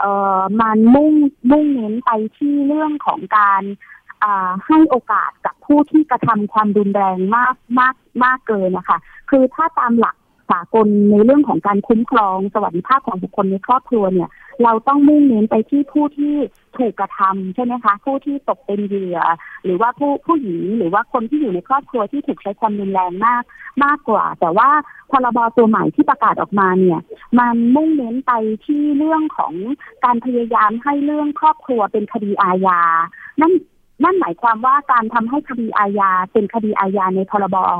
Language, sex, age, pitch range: Thai, female, 30-49, 200-275 Hz